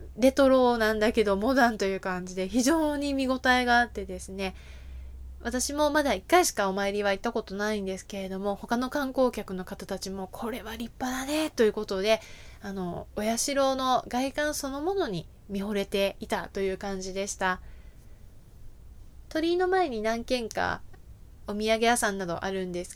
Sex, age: female, 20-39